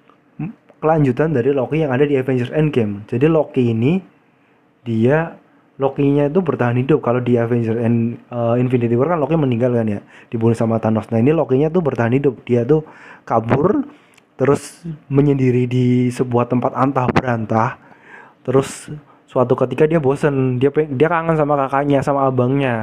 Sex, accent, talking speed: male, native, 150 wpm